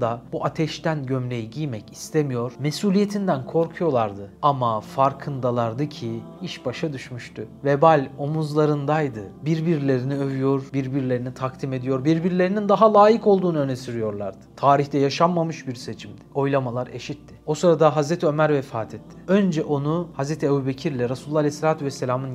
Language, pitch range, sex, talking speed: Turkish, 125-160 Hz, male, 120 wpm